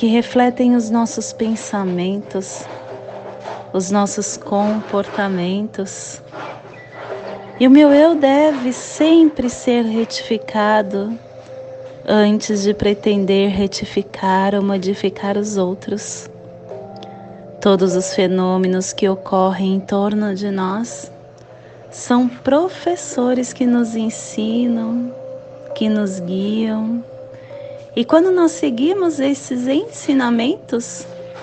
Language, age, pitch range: Portuguese, 30-49, 190-250 Hz